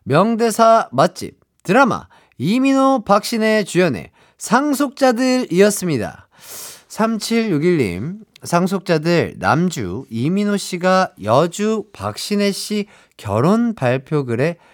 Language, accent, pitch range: Korean, native, 130-200 Hz